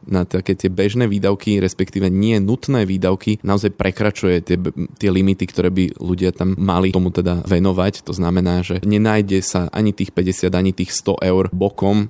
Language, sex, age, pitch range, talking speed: Slovak, male, 20-39, 90-100 Hz, 175 wpm